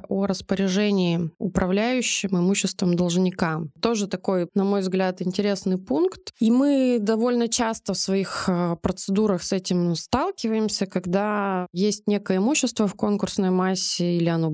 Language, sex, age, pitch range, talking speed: Russian, female, 20-39, 165-195 Hz, 130 wpm